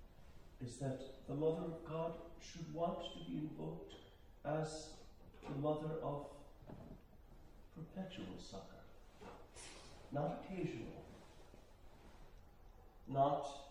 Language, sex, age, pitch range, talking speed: English, male, 50-69, 90-140 Hz, 90 wpm